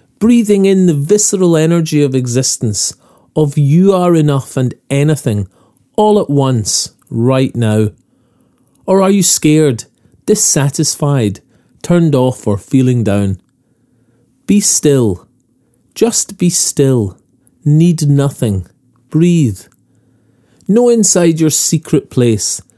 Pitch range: 120-170 Hz